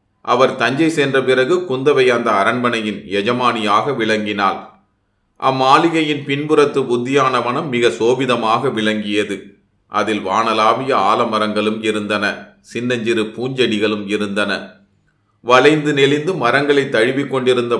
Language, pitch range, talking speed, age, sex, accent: Tamil, 110-135 Hz, 90 wpm, 30-49, male, native